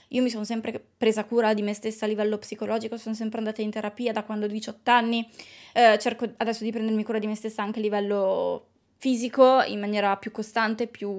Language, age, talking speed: Italian, 20-39, 215 wpm